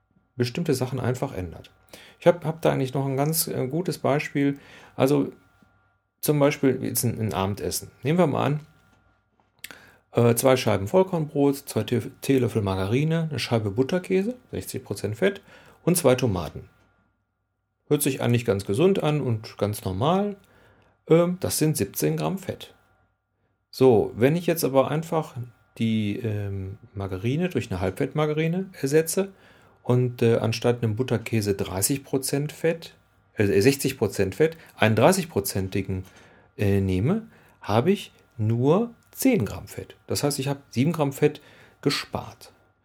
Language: German